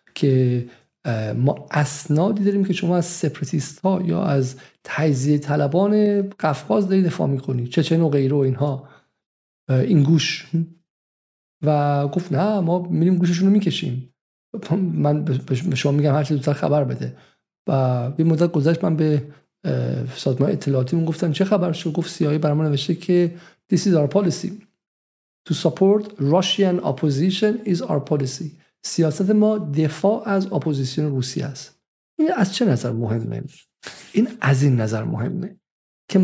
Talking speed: 145 wpm